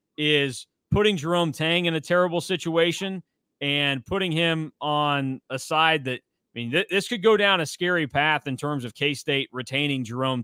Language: English